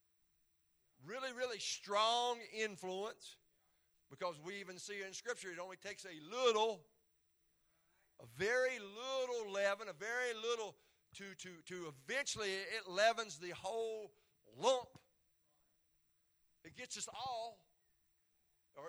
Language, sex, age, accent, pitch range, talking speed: English, male, 50-69, American, 180-245 Hz, 115 wpm